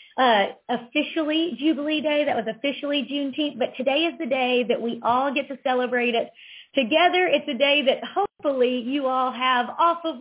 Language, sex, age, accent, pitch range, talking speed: English, female, 40-59, American, 225-275 Hz, 180 wpm